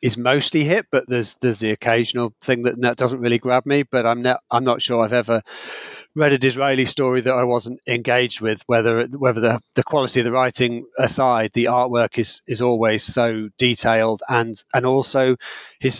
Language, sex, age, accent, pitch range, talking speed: English, male, 30-49, British, 110-130 Hz, 195 wpm